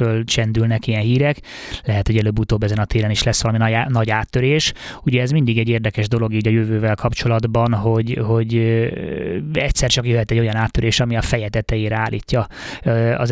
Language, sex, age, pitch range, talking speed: Hungarian, male, 20-39, 110-130 Hz, 170 wpm